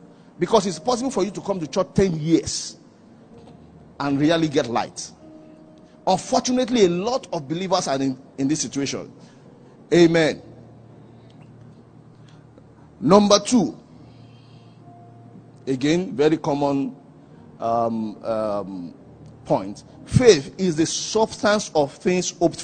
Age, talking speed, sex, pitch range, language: 50-69, 110 wpm, male, 125-185 Hz, English